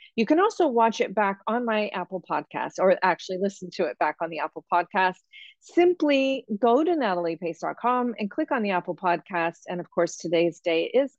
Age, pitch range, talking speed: 40-59, 180-235 Hz, 195 wpm